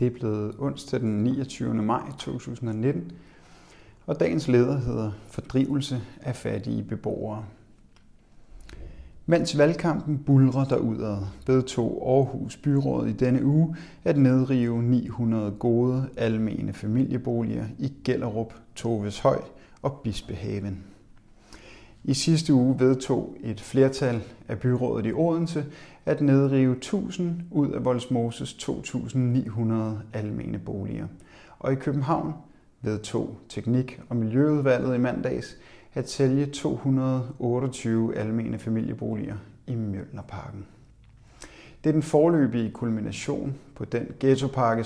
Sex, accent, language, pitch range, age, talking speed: male, native, Danish, 110-135 Hz, 30-49, 105 wpm